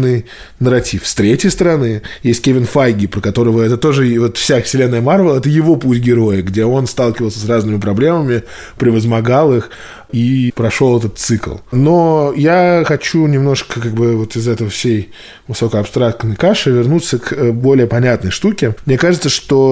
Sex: male